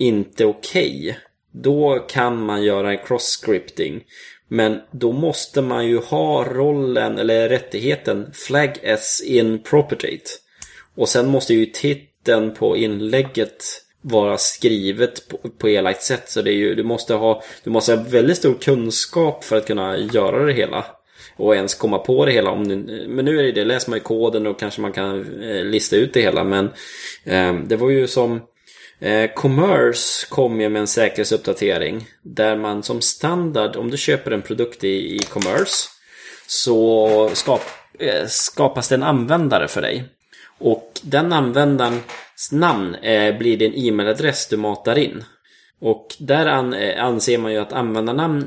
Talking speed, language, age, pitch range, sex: 160 wpm, Swedish, 20-39, 110-135 Hz, male